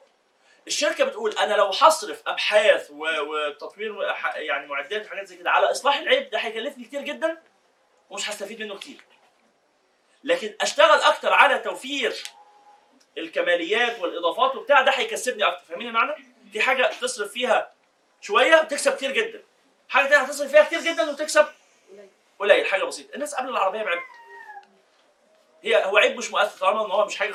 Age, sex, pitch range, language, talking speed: 30-49, male, 200-300 Hz, Arabic, 155 wpm